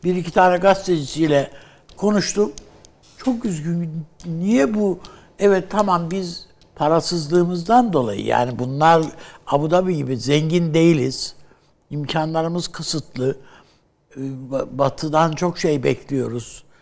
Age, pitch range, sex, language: 60-79, 140-190 Hz, male, Turkish